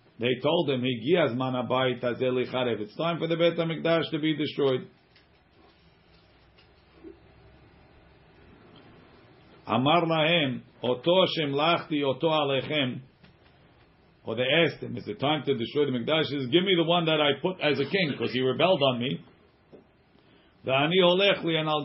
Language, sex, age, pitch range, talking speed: English, male, 50-69, 130-160 Hz, 115 wpm